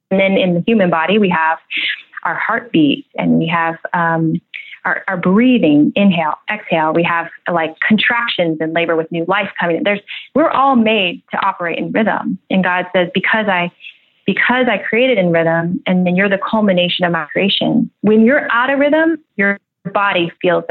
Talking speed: 185 wpm